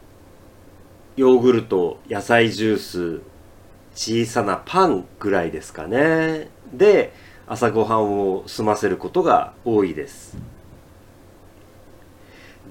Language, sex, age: Japanese, male, 40-59